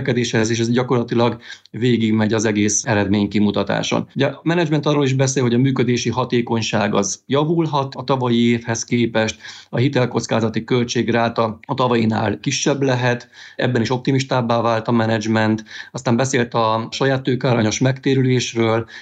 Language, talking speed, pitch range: Hungarian, 135 wpm, 110-125 Hz